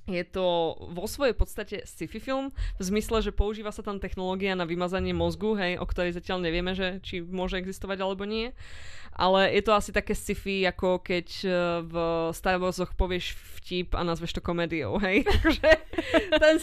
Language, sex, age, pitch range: Slovak, female, 20-39, 170-195 Hz